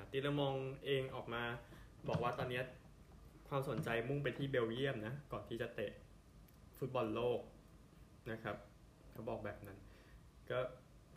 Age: 20-39